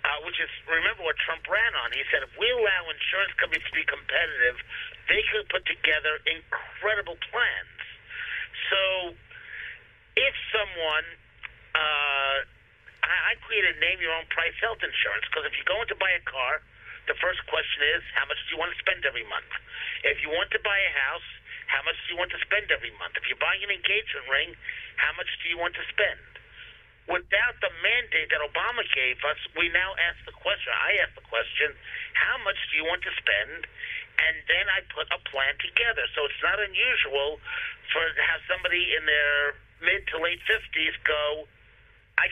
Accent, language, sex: American, English, male